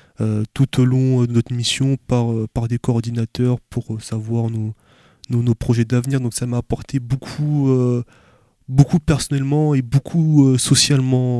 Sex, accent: male, French